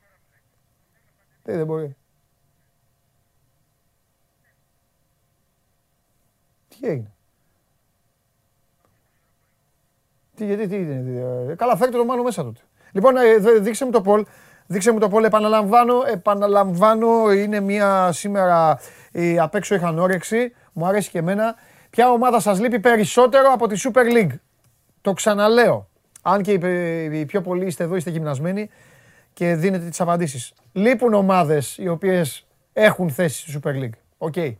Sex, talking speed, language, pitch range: male, 125 wpm, Greek, 145-210 Hz